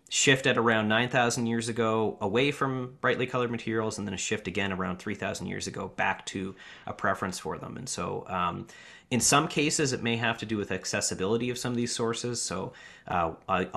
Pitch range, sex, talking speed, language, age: 100-120 Hz, male, 210 wpm, English, 30-49